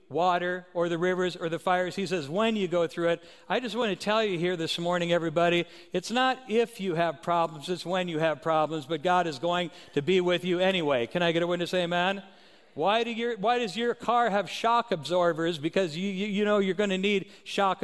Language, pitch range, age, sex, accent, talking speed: English, 175-225 Hz, 60-79, male, American, 235 wpm